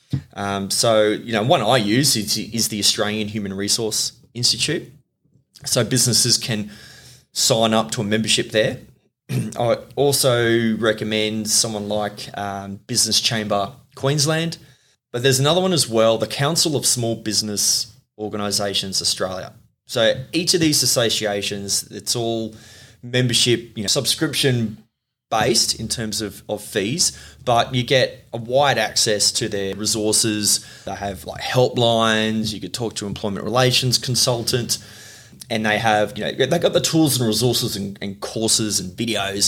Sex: male